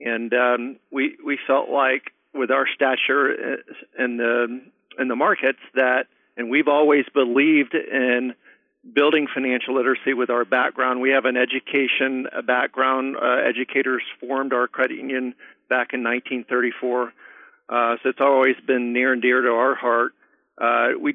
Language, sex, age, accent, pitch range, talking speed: English, male, 50-69, American, 125-135 Hz, 155 wpm